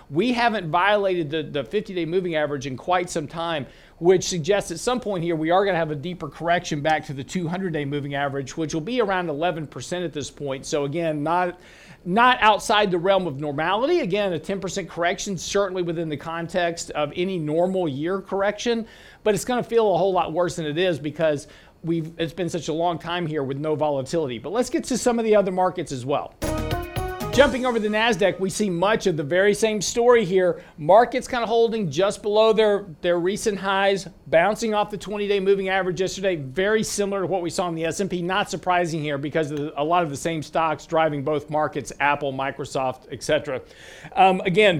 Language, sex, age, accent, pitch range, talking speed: English, male, 50-69, American, 160-205 Hz, 205 wpm